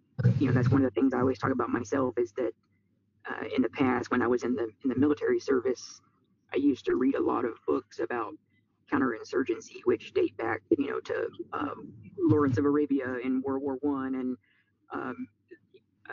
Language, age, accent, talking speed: English, 40-59, American, 195 wpm